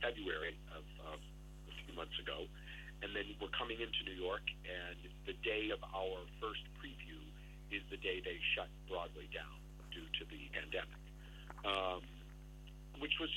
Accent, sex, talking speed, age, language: American, male, 155 wpm, 50-69, English